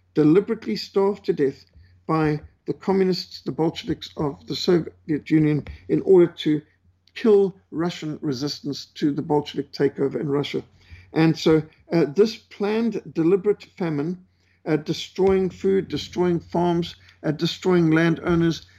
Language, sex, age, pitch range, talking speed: English, male, 50-69, 145-175 Hz, 130 wpm